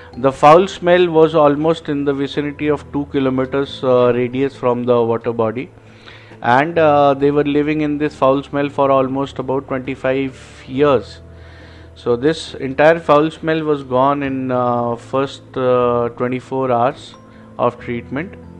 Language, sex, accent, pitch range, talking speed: Hindi, male, native, 120-140 Hz, 150 wpm